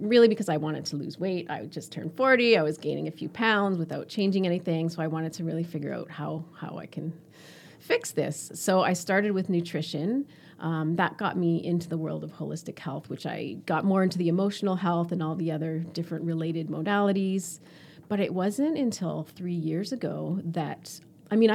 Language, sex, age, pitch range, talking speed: English, female, 30-49, 160-205 Hz, 205 wpm